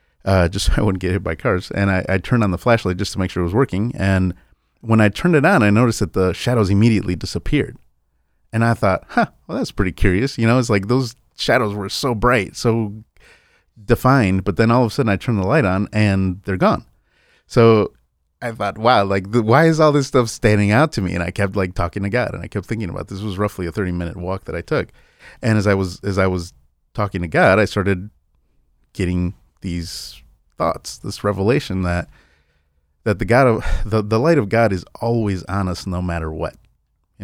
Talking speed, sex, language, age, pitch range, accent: 225 wpm, male, English, 30-49, 90-115 Hz, American